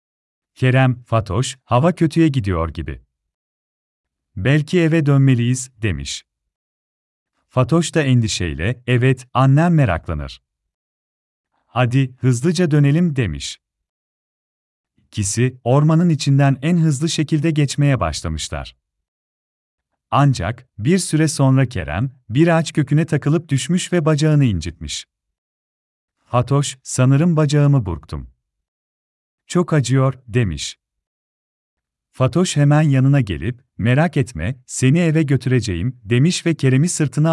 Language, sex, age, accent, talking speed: Turkish, male, 40-59, native, 100 wpm